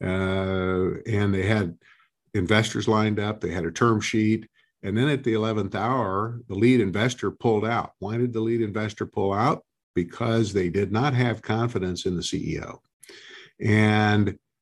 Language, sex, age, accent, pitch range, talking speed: English, male, 50-69, American, 95-115 Hz, 160 wpm